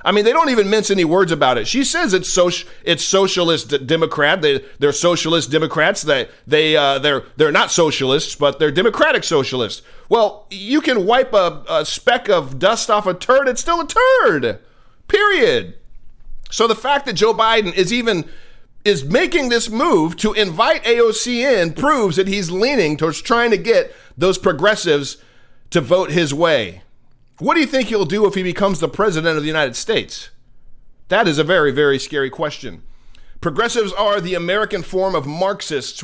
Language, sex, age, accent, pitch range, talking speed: English, male, 40-59, American, 160-215 Hz, 185 wpm